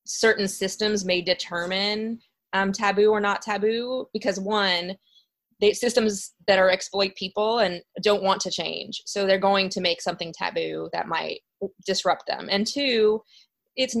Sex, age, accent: female, 20-39, American